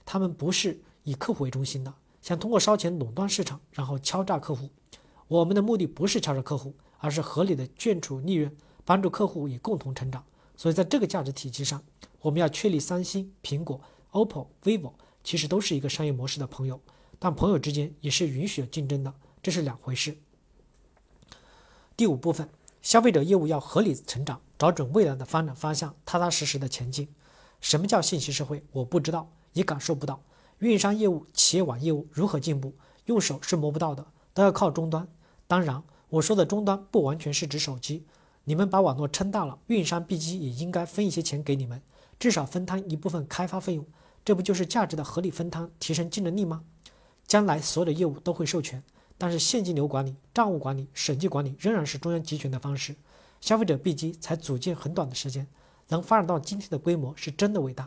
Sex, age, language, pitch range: male, 40-59, Chinese, 140-185 Hz